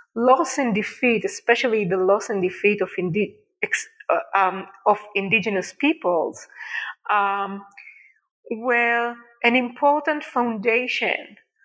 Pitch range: 200-250 Hz